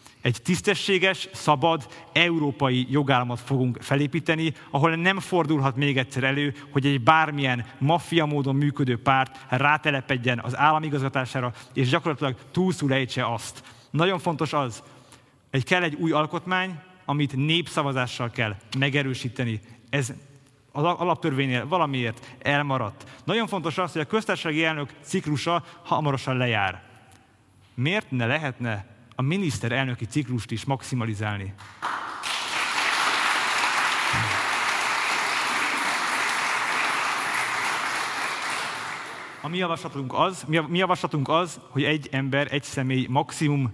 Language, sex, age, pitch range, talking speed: Hungarian, male, 30-49, 125-155 Hz, 100 wpm